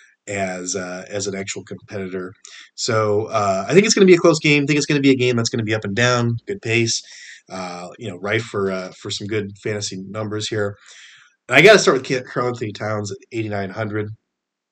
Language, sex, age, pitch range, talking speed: English, male, 30-49, 100-120 Hz, 230 wpm